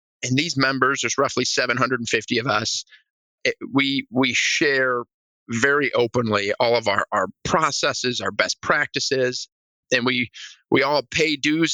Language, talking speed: English, 145 wpm